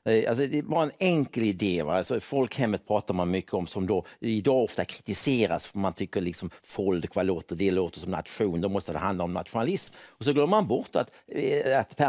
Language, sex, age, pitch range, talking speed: English, male, 60-79, 95-135 Hz, 195 wpm